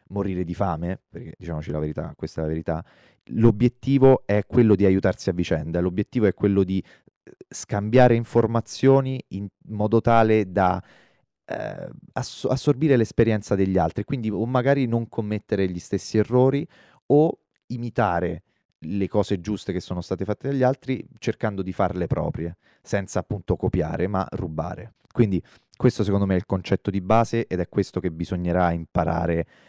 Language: Italian